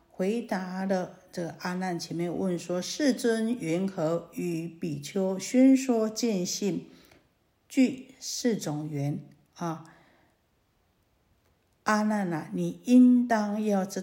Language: Chinese